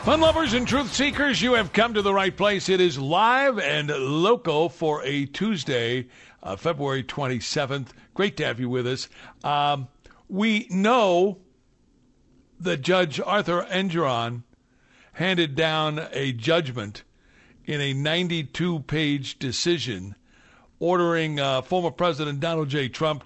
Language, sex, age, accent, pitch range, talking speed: English, male, 60-79, American, 135-180 Hz, 135 wpm